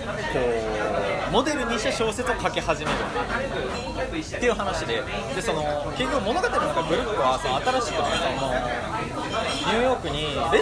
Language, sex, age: Japanese, male, 20-39